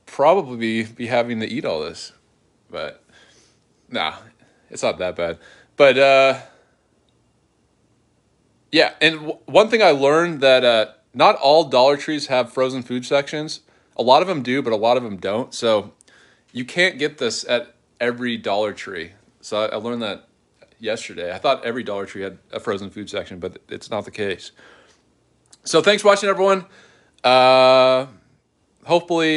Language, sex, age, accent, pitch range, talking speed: English, male, 20-39, American, 110-140 Hz, 170 wpm